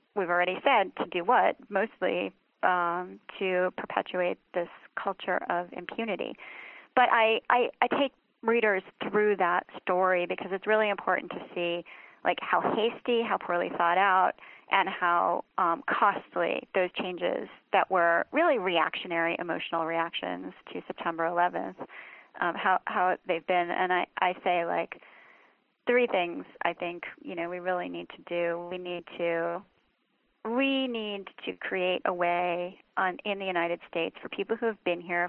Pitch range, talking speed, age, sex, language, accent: 175-210 Hz, 155 wpm, 30-49, female, English, American